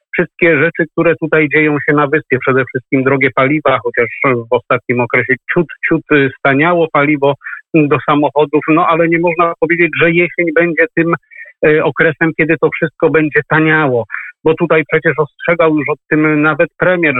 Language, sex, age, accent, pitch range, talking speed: Polish, male, 50-69, native, 140-175 Hz, 165 wpm